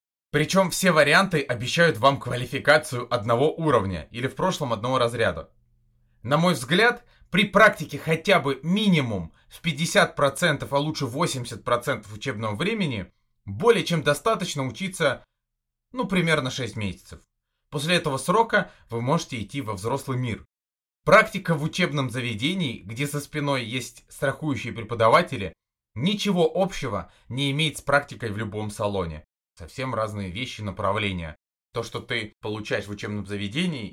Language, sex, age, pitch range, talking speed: Russian, male, 30-49, 120-180 Hz, 135 wpm